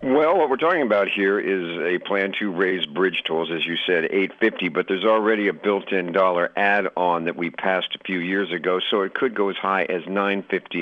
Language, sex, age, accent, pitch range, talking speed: English, male, 50-69, American, 90-110 Hz, 215 wpm